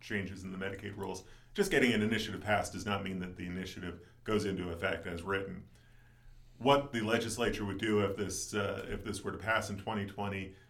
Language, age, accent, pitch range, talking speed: English, 40-59, American, 95-120 Hz, 200 wpm